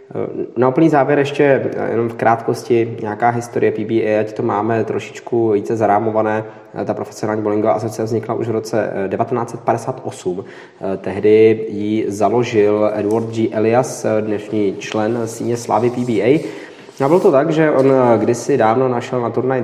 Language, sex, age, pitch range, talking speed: Czech, male, 20-39, 105-130 Hz, 140 wpm